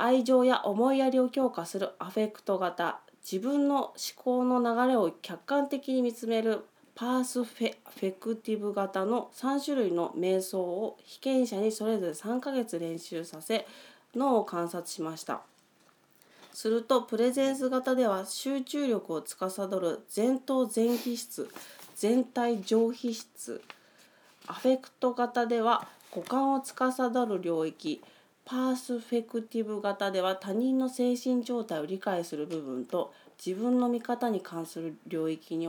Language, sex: Japanese, female